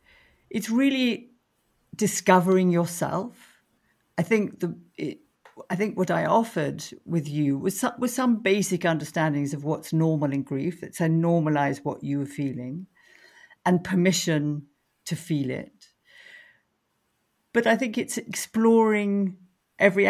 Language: English